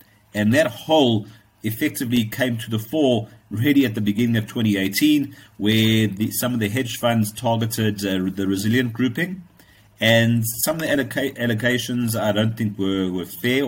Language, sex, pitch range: English, male, 105-125 Hz